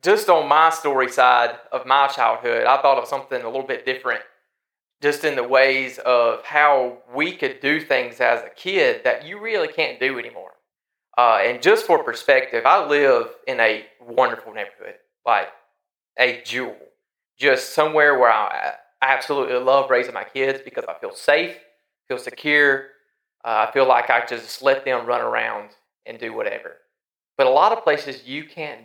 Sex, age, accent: male, 30-49, American